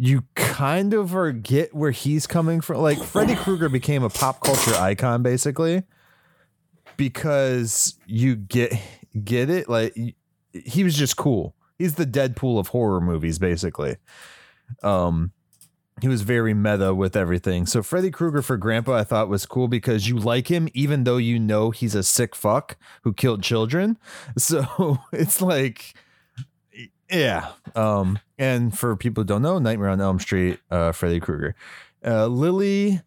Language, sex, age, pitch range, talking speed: English, male, 20-39, 105-150 Hz, 150 wpm